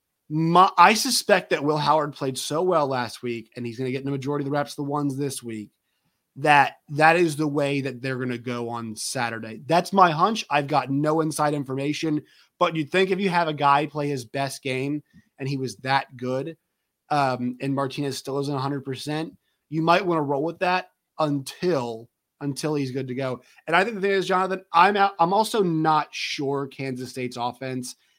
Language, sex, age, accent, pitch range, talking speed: English, male, 30-49, American, 125-155 Hz, 210 wpm